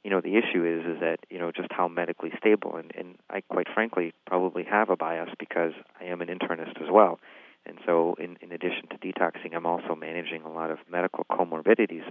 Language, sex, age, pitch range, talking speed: English, male, 40-59, 80-90 Hz, 220 wpm